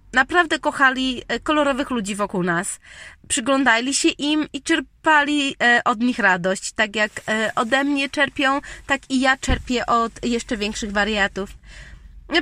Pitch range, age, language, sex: 210-280 Hz, 30-49, Polish, female